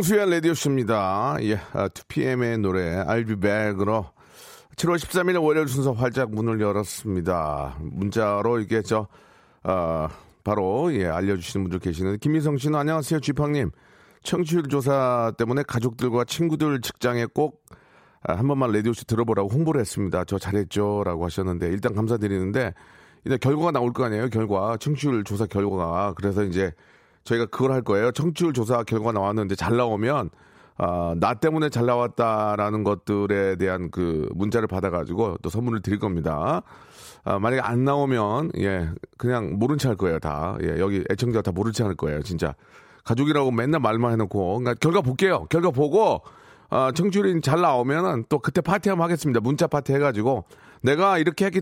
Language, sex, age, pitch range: Korean, male, 40-59, 100-140 Hz